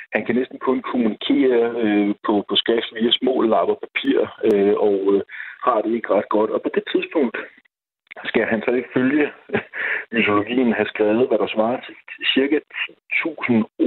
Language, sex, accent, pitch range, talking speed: Danish, male, native, 105-155 Hz, 170 wpm